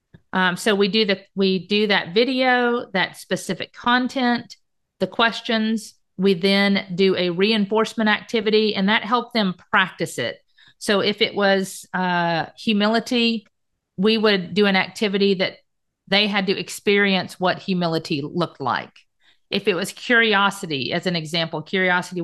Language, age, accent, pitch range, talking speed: English, 50-69, American, 180-215 Hz, 145 wpm